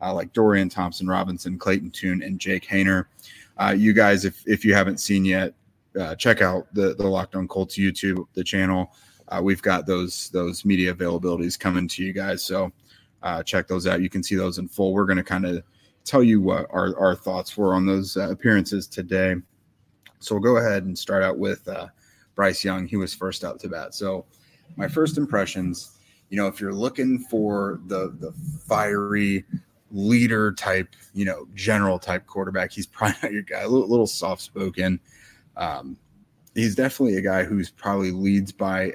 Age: 30-49